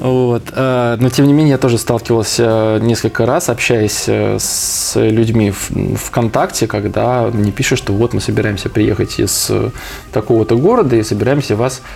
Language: Russian